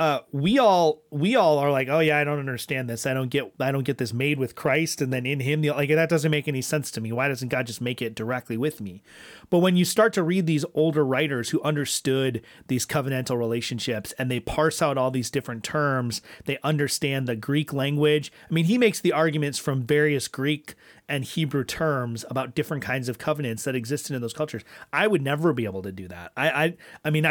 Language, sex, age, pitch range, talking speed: English, male, 30-49, 130-165 Hz, 235 wpm